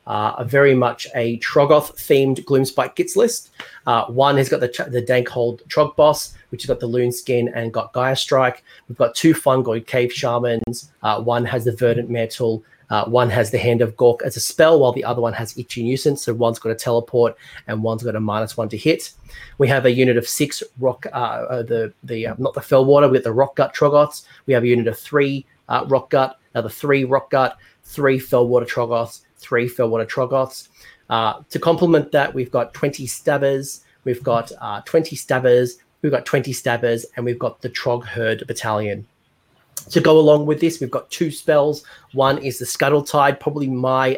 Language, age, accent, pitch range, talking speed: English, 30-49, Australian, 115-140 Hz, 205 wpm